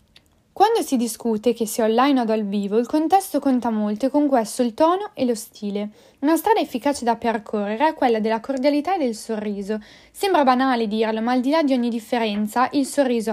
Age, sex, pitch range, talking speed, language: 10-29, female, 220-290 Hz, 205 wpm, Italian